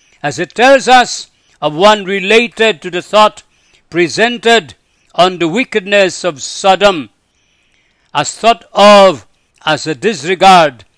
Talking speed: 120 wpm